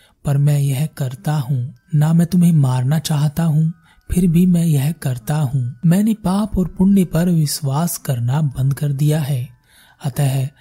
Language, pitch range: Hindi, 135-170 Hz